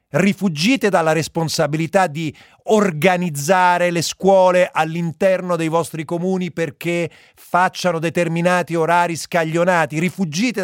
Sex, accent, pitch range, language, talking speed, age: male, native, 130-185 Hz, Italian, 95 wpm, 40-59